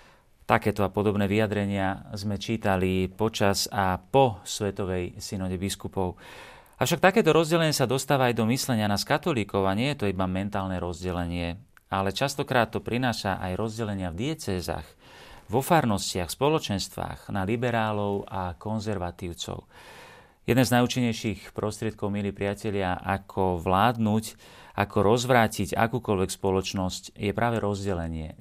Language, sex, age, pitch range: Slovak, male, 40-59, 95-115 Hz